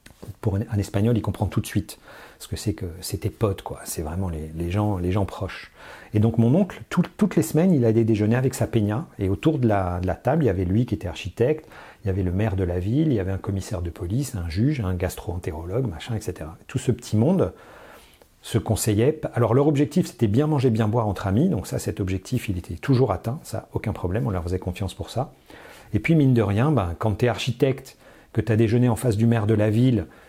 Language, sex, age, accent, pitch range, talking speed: French, male, 40-59, French, 100-125 Hz, 250 wpm